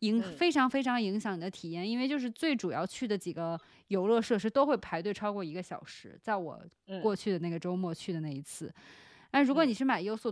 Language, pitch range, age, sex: Chinese, 180-225 Hz, 20-39, female